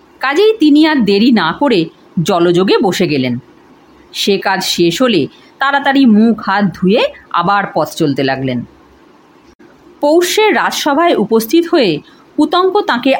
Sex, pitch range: female, 200-330 Hz